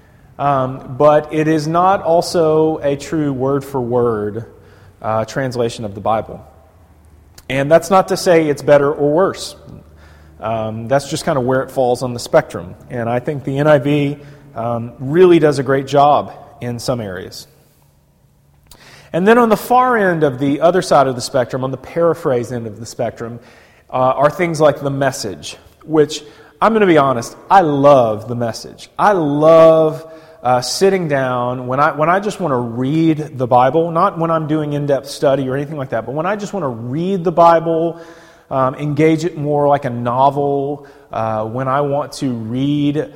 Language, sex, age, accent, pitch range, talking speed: English, male, 30-49, American, 125-155 Hz, 180 wpm